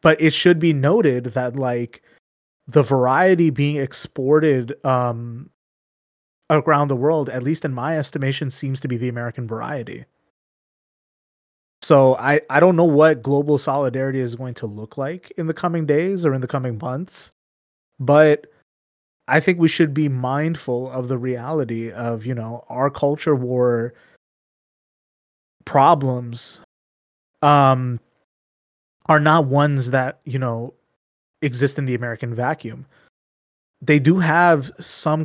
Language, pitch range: English, 125-150 Hz